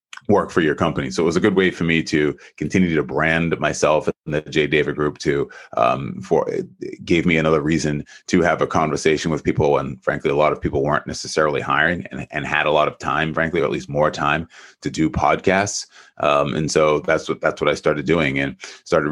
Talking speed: 230 wpm